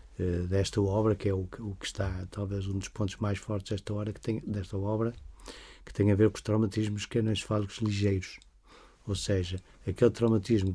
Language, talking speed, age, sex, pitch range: Portuguese, 200 wpm, 50-69, male, 100-115 Hz